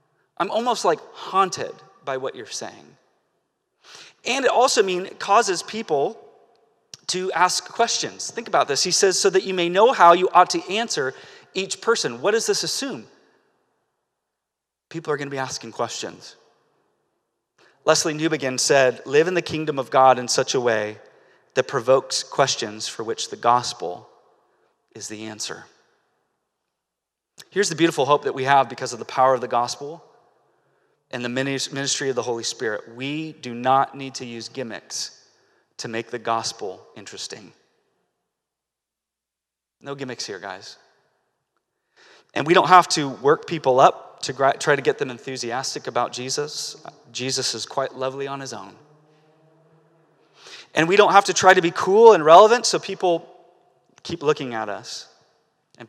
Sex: male